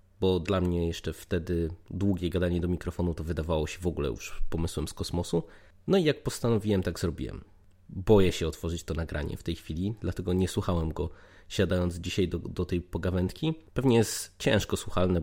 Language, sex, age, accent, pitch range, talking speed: Polish, male, 20-39, native, 90-100 Hz, 180 wpm